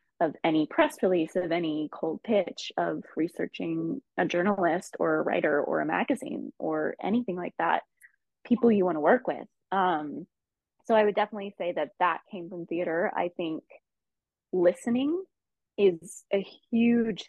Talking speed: 155 wpm